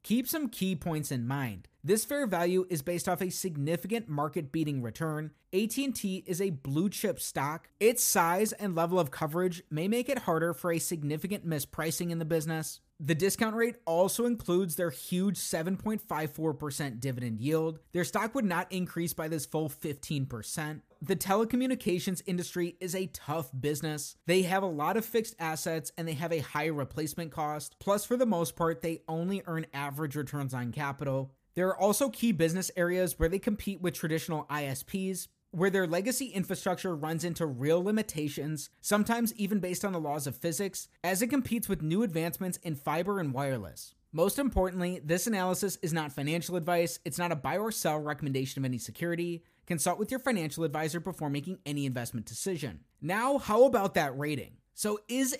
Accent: American